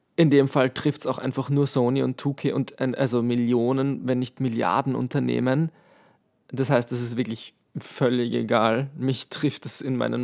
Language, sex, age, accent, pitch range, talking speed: German, male, 20-39, German, 120-140 Hz, 175 wpm